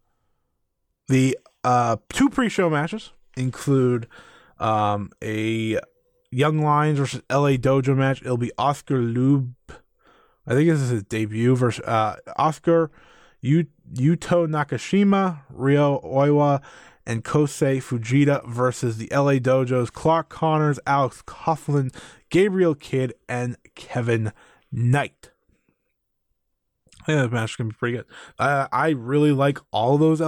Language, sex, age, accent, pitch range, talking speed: English, male, 20-39, American, 120-150 Hz, 125 wpm